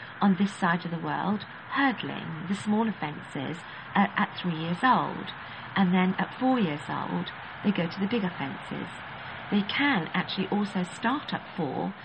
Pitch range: 175-210 Hz